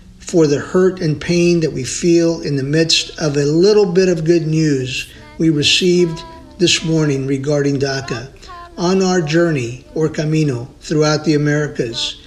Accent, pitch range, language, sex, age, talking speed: American, 140-180 Hz, English, male, 50-69, 155 wpm